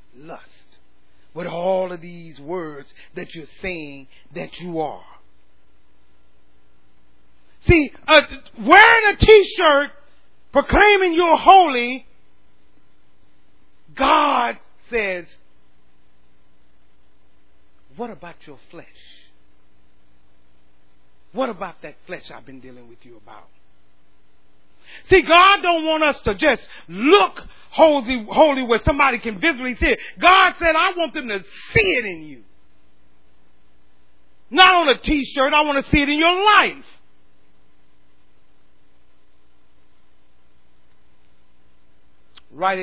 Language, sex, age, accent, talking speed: English, male, 40-59, American, 105 wpm